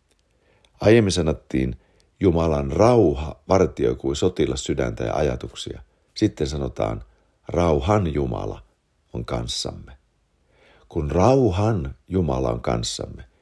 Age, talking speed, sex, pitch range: 60-79, 95 wpm, male, 70-95 Hz